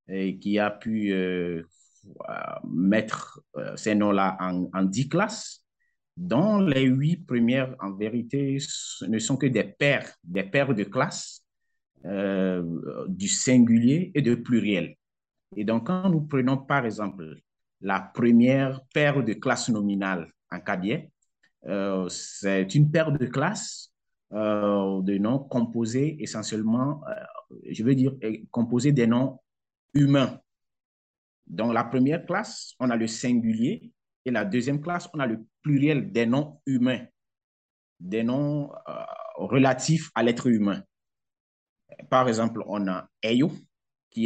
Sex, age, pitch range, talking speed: male, 50-69, 110-150 Hz, 135 wpm